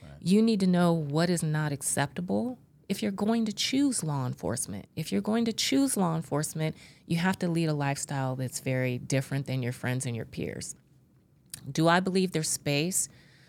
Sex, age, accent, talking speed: female, 30-49, American, 185 wpm